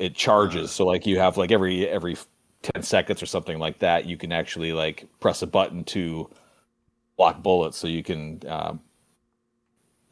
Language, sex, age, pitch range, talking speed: English, male, 30-49, 85-115 Hz, 170 wpm